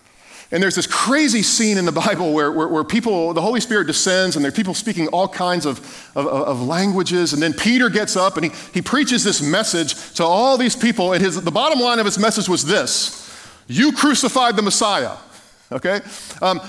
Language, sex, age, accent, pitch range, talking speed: English, male, 40-59, American, 155-215 Hz, 210 wpm